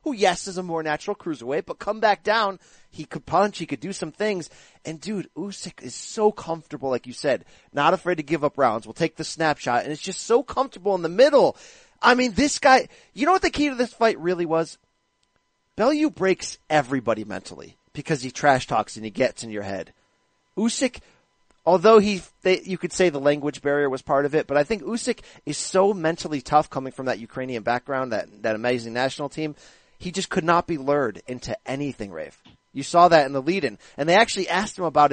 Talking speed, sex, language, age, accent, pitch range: 215 wpm, male, English, 30-49, American, 145-210 Hz